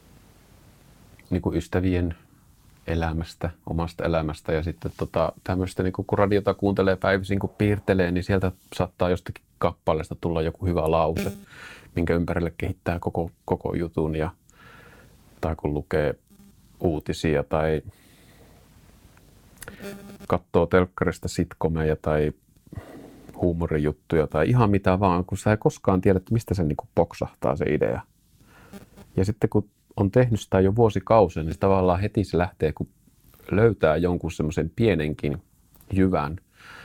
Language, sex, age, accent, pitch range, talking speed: Finnish, male, 30-49, native, 80-95 Hz, 125 wpm